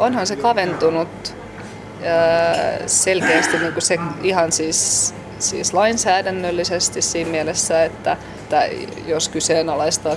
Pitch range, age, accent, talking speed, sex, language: 155-175 Hz, 20-39, native, 95 wpm, female, Finnish